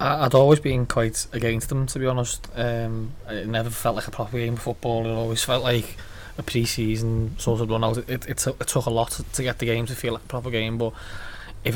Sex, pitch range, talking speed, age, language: male, 110-120 Hz, 235 wpm, 20-39, English